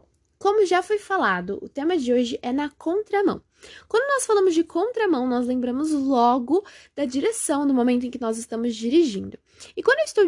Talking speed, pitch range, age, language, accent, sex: 185 wpm, 230-340 Hz, 10-29, Portuguese, Brazilian, female